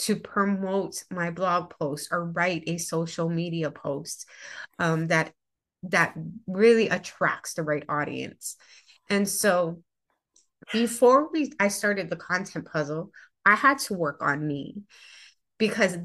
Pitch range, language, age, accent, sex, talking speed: 165-215 Hz, English, 30-49, American, female, 130 wpm